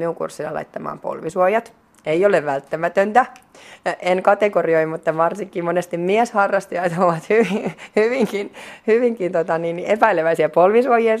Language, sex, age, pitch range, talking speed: Finnish, female, 30-49, 155-200 Hz, 110 wpm